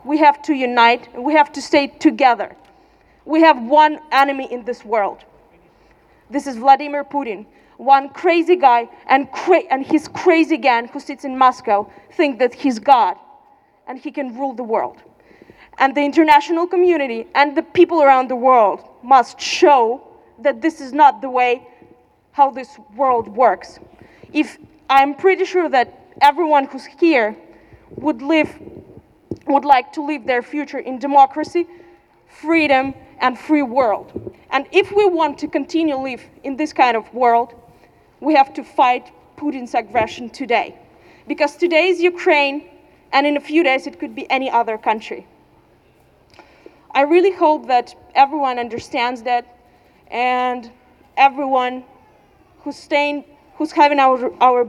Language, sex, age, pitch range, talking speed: German, female, 30-49, 250-310 Hz, 150 wpm